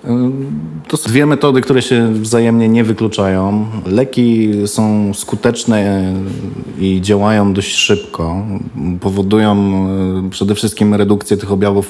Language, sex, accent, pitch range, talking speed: Polish, male, native, 95-125 Hz, 110 wpm